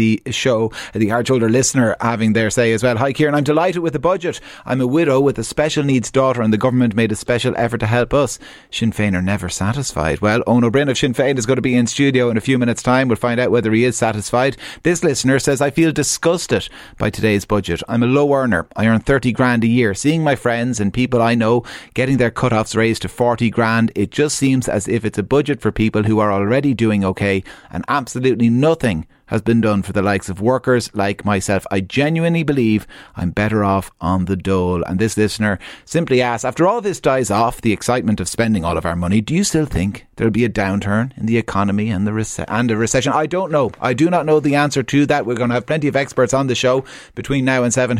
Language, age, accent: English, 30-49, Irish